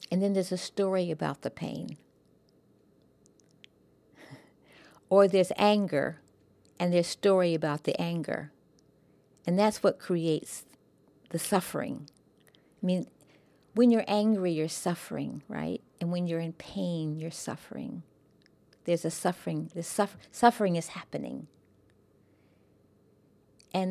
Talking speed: 120 wpm